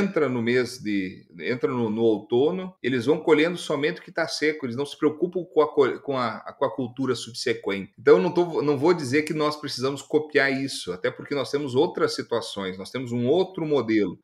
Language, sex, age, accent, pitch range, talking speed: Portuguese, male, 40-59, Brazilian, 120-160 Hz, 200 wpm